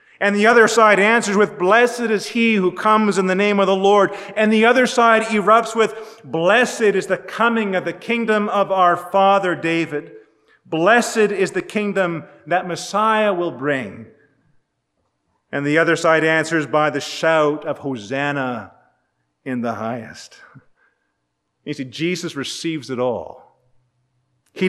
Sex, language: male, English